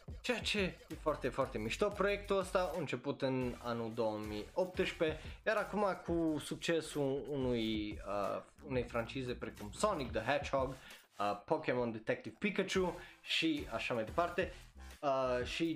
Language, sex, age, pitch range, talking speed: Romanian, male, 20-39, 120-165 Hz, 135 wpm